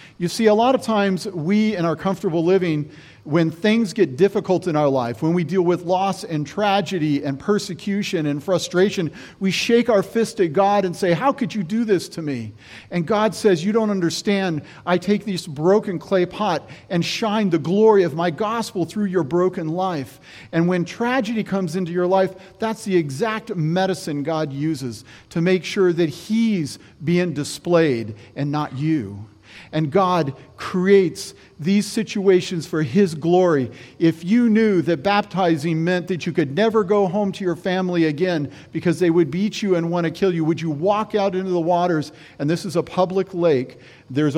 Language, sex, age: English, male, 40-59